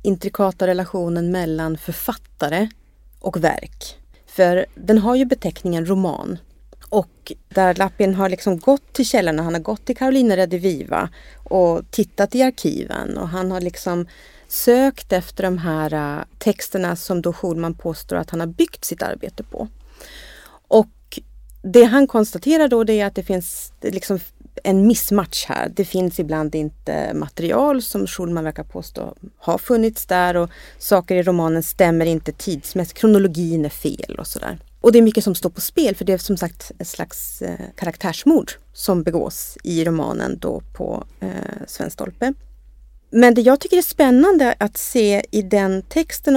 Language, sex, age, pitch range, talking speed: Swedish, female, 30-49, 175-230 Hz, 160 wpm